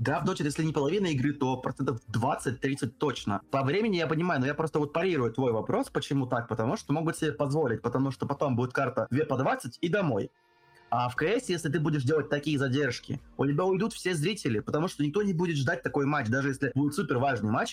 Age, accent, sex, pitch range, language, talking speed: 20-39, native, male, 125-160 Hz, Russian, 225 wpm